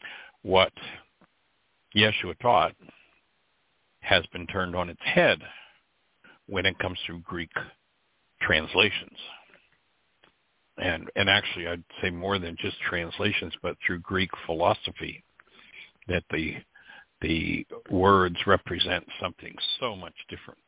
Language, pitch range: English, 90-110 Hz